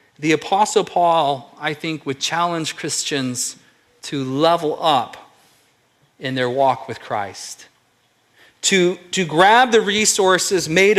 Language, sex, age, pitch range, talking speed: English, male, 40-59, 145-200 Hz, 120 wpm